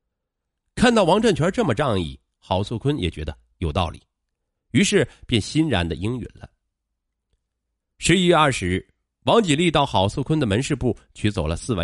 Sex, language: male, Chinese